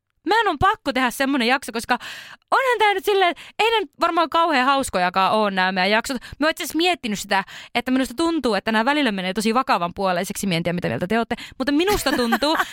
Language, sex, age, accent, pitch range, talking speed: Finnish, female, 20-39, native, 215-290 Hz, 195 wpm